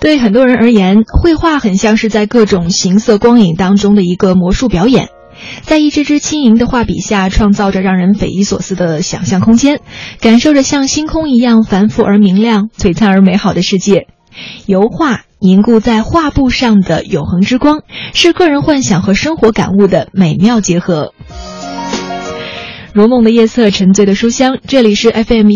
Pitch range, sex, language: 185-235 Hz, female, Chinese